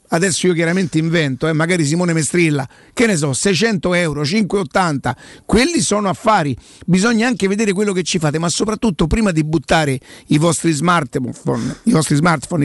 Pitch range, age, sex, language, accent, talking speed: 155-195 Hz, 50-69, male, Italian, native, 160 wpm